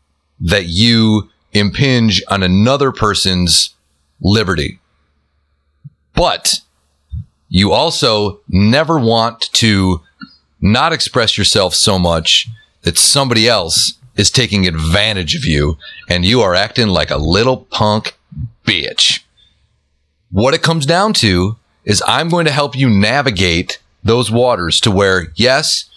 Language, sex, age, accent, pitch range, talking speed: English, male, 30-49, American, 90-130 Hz, 120 wpm